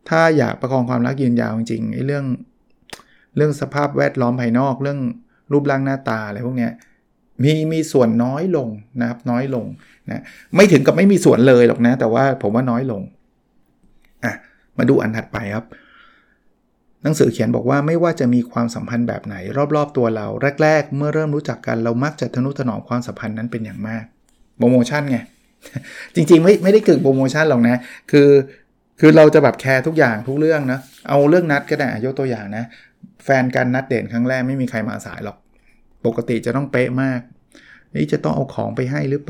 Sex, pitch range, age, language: male, 120-150 Hz, 20-39, Thai